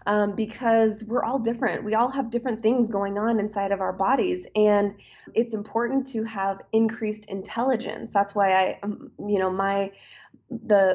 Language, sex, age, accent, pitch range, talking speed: English, female, 20-39, American, 190-220 Hz, 160 wpm